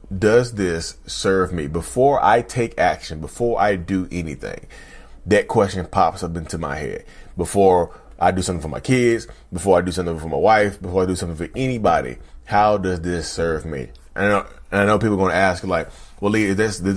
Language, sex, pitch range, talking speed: English, male, 80-110 Hz, 215 wpm